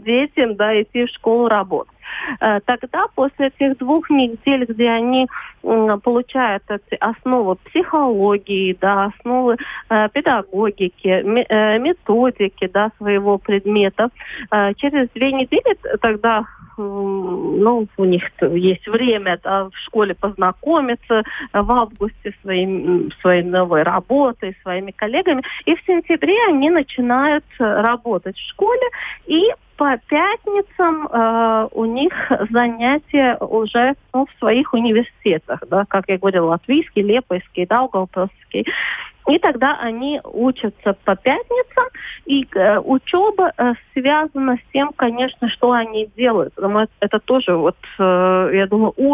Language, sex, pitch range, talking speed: Russian, female, 200-275 Hz, 125 wpm